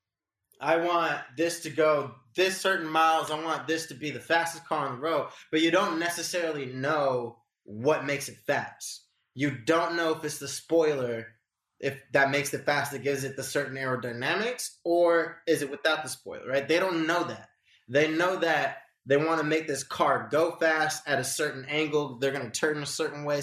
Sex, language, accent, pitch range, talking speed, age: male, English, American, 130-160 Hz, 200 wpm, 20-39